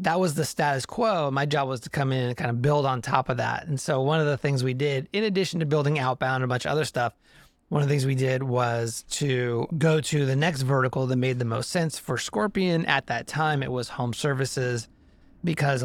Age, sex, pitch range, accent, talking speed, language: 30-49, male, 130-165 Hz, American, 250 wpm, English